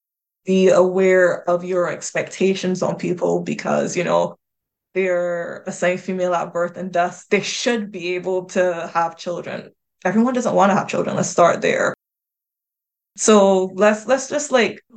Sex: female